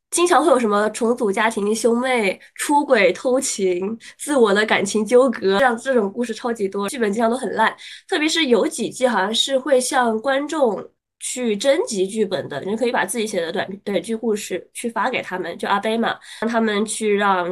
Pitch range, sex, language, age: 210-280 Hz, female, Chinese, 20-39